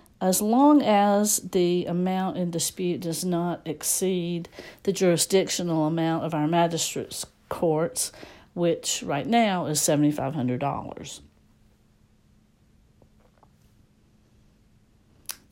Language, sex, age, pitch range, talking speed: English, female, 60-79, 160-190 Hz, 85 wpm